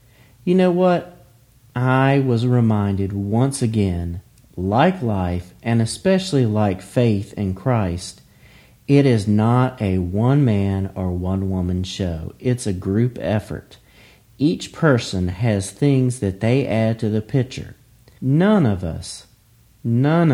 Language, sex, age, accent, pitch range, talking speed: English, male, 40-59, American, 95-125 Hz, 125 wpm